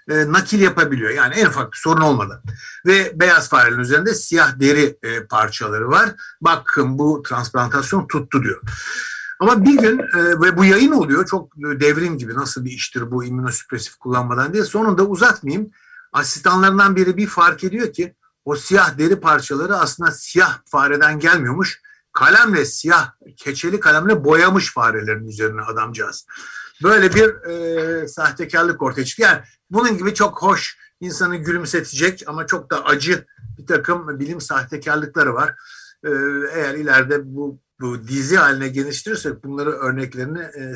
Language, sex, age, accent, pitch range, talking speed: Turkish, male, 60-79, native, 125-190 Hz, 140 wpm